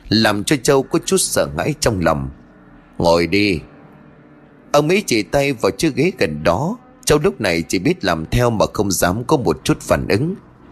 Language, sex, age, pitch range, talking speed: Vietnamese, male, 20-39, 85-145 Hz, 195 wpm